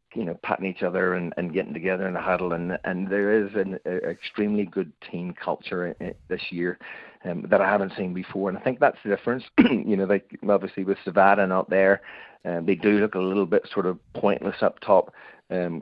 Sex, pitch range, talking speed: male, 90-95 Hz, 220 wpm